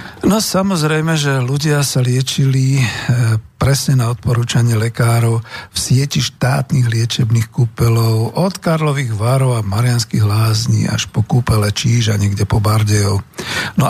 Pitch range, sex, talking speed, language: 110-145 Hz, male, 125 wpm, Slovak